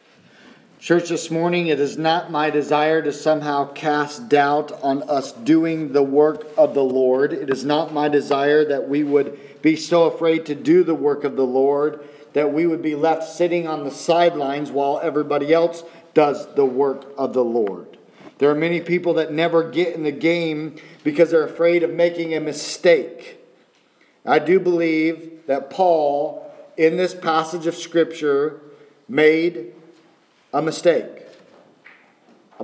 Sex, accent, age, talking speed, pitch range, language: male, American, 40-59, 160 wpm, 150-175 Hz, English